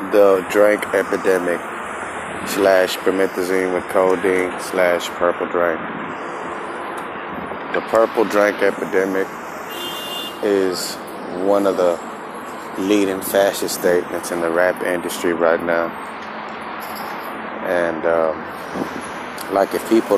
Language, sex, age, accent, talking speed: English, male, 20-39, American, 95 wpm